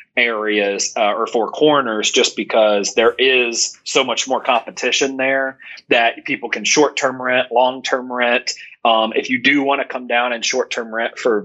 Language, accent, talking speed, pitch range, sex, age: English, American, 175 wpm, 110-130 Hz, male, 30-49